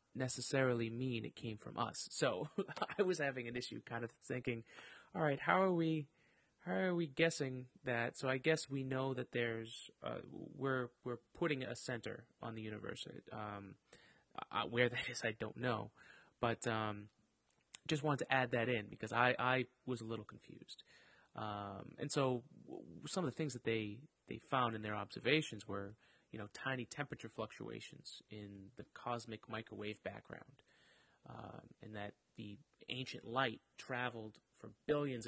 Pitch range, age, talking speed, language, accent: 110-135 Hz, 30-49, 165 wpm, English, American